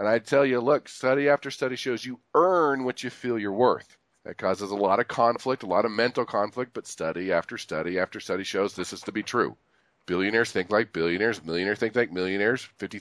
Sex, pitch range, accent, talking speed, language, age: male, 105-140 Hz, American, 215 wpm, English, 40-59